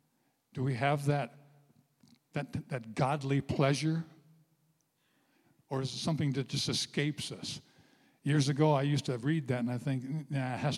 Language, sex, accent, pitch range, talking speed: English, male, American, 130-155 Hz, 160 wpm